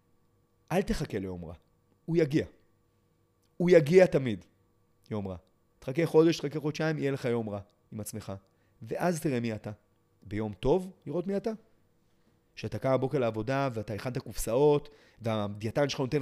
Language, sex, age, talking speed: Hebrew, male, 30-49, 150 wpm